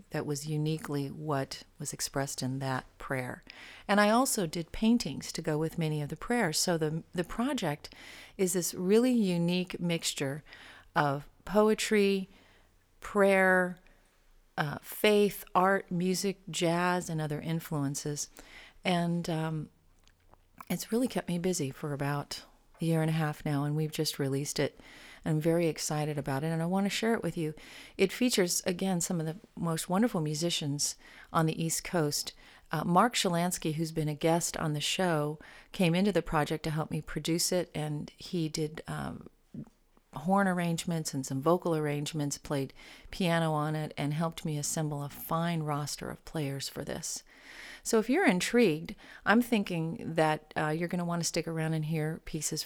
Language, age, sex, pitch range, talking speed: English, 40-59, female, 150-185 Hz, 170 wpm